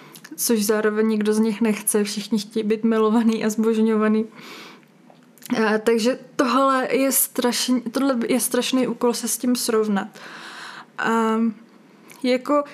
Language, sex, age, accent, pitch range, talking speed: Czech, female, 20-39, native, 210-255 Hz, 120 wpm